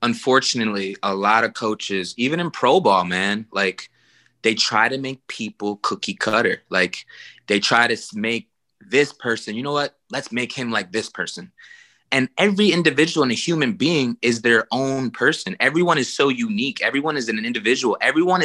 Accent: American